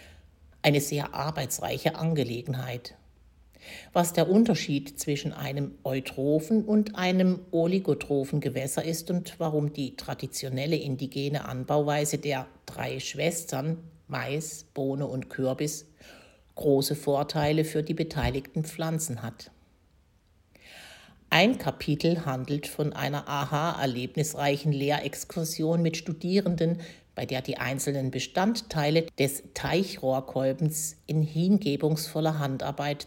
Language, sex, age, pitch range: German, female, 60-79, 130-160 Hz